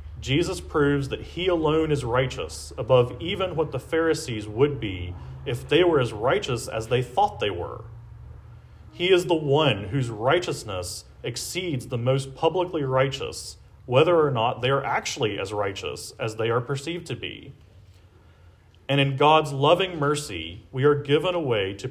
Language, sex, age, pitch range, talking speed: English, male, 40-59, 105-150 Hz, 165 wpm